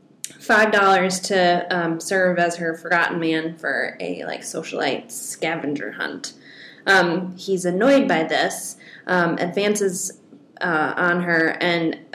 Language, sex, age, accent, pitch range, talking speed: English, female, 20-39, American, 170-190 Hz, 130 wpm